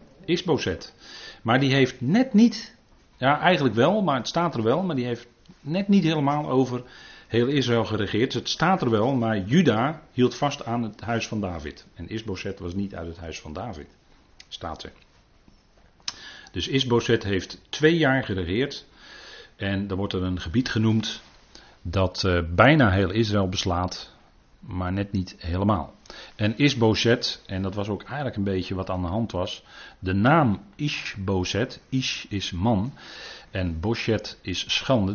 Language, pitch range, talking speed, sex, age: Dutch, 90-120 Hz, 160 wpm, male, 40-59